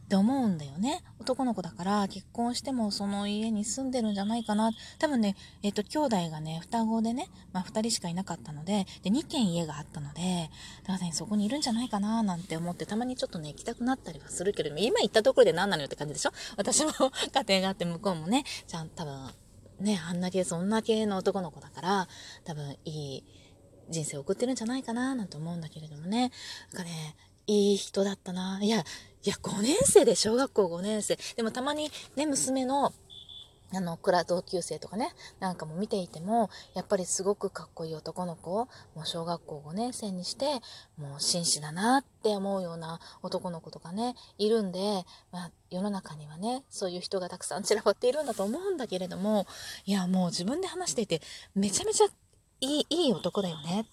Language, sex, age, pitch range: Japanese, female, 20-39, 170-230 Hz